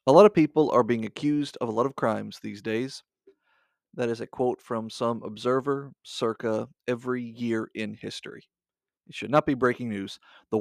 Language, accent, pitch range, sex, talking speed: English, American, 115-145 Hz, male, 185 wpm